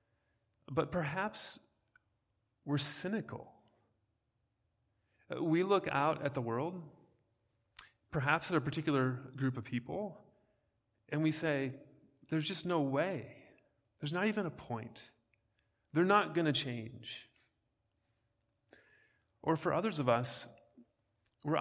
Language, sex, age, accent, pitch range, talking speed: English, male, 40-59, American, 115-150 Hz, 110 wpm